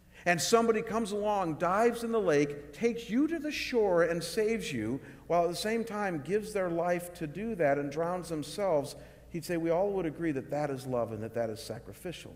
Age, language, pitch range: 50-69, English, 155-215 Hz